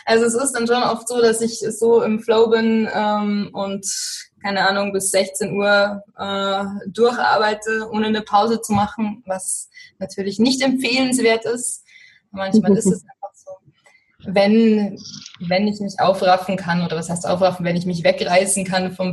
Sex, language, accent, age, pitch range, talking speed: female, German, German, 20-39, 185-225 Hz, 165 wpm